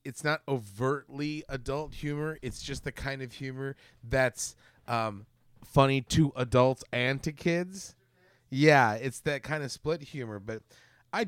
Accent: American